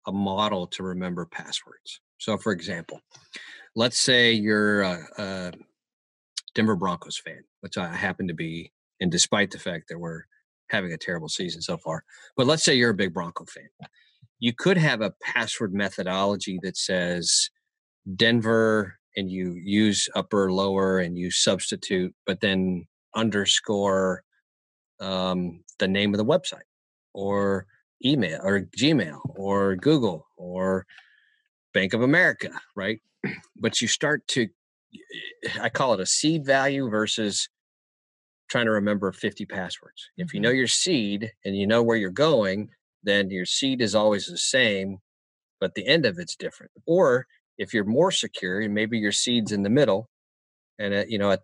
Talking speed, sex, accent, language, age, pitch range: 155 wpm, male, American, English, 30-49, 95-115 Hz